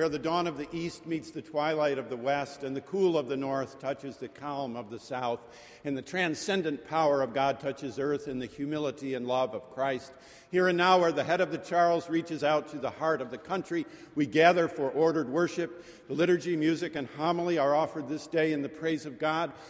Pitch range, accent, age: 135-165 Hz, American, 50-69